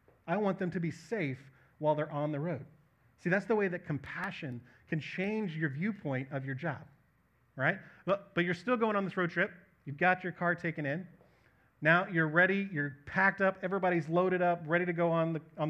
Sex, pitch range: male, 130-185 Hz